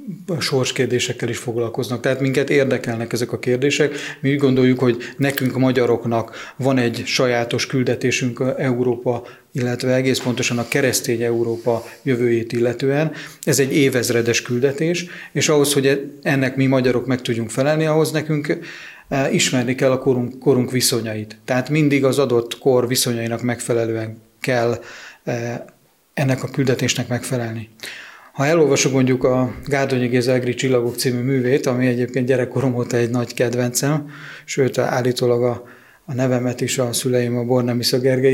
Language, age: Hungarian, 30-49